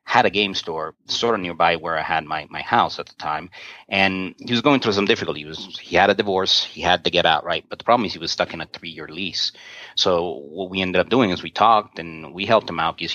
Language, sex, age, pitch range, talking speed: English, male, 30-49, 80-100 Hz, 285 wpm